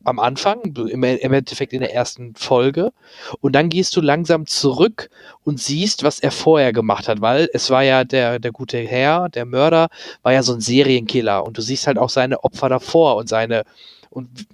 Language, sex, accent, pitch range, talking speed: German, male, German, 120-145 Hz, 195 wpm